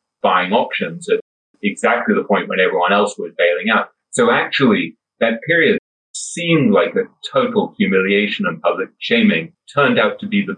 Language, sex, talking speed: English, male, 165 wpm